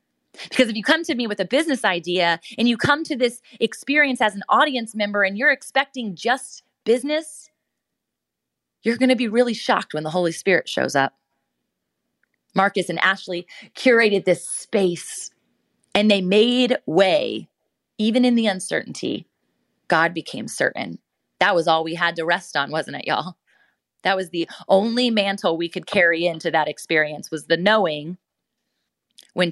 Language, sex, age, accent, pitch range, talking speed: English, female, 20-39, American, 180-245 Hz, 165 wpm